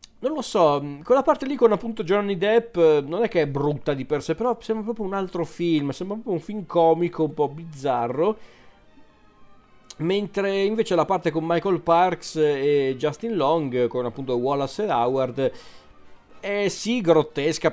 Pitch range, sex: 125-150 Hz, male